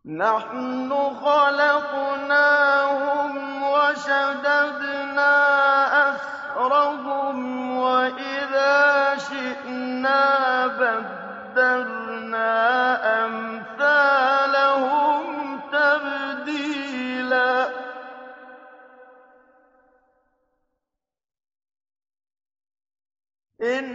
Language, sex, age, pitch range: Arabic, male, 30-49, 255-285 Hz